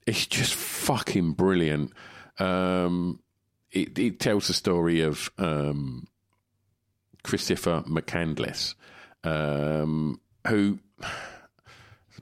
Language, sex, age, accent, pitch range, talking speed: English, male, 50-69, British, 75-95 Hz, 80 wpm